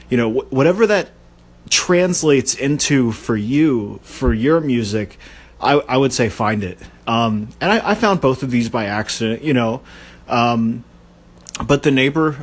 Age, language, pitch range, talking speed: 30-49, English, 110-145 Hz, 160 wpm